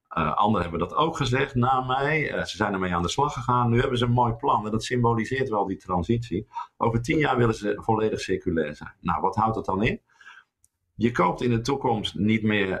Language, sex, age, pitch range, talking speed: English, male, 50-69, 95-120 Hz, 230 wpm